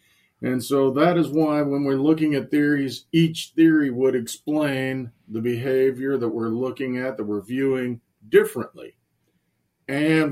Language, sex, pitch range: English, male, 120-145 Hz